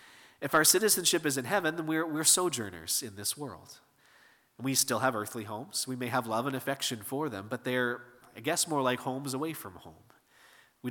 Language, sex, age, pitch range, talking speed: English, male, 30-49, 120-150 Hz, 210 wpm